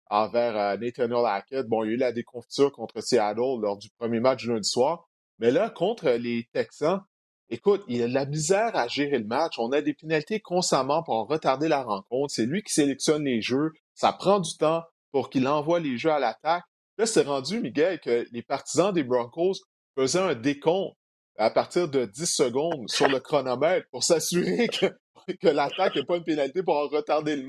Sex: male